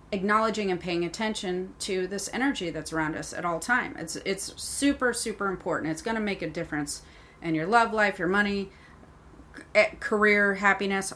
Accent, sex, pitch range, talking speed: American, female, 165-200 Hz, 170 wpm